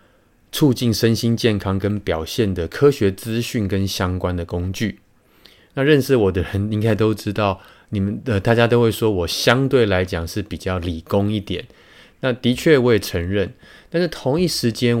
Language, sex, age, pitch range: Chinese, male, 20-39, 95-120 Hz